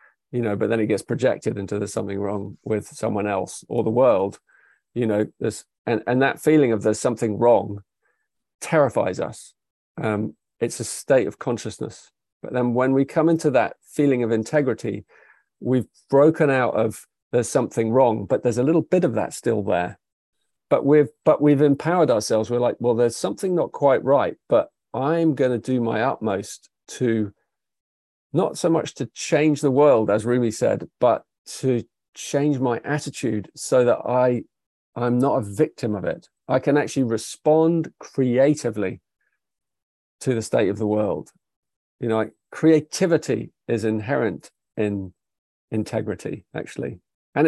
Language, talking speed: English, 165 wpm